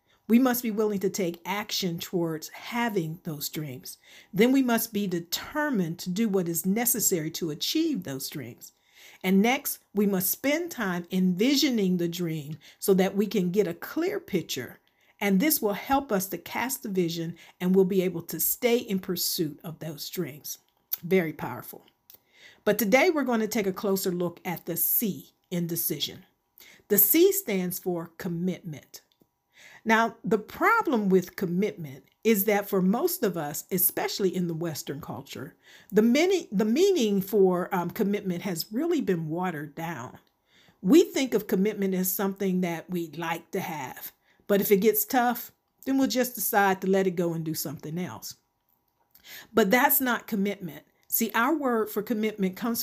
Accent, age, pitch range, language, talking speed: American, 50-69, 175-225 Hz, English, 170 wpm